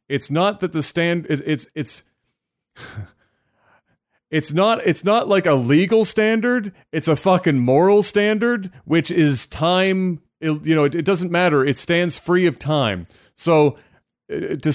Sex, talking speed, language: male, 150 wpm, English